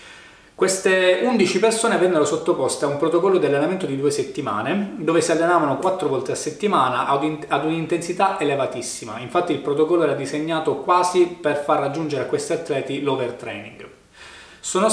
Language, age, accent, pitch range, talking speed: Italian, 20-39, native, 135-175 Hz, 155 wpm